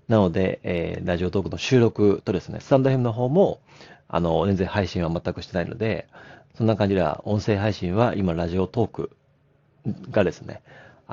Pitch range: 90-135 Hz